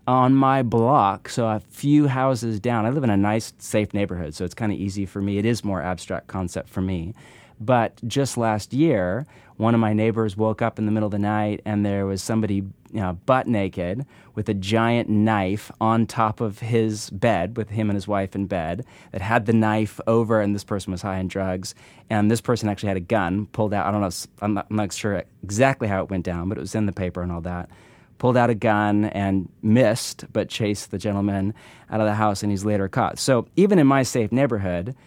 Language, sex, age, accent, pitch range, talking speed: English, male, 30-49, American, 100-120 Hz, 235 wpm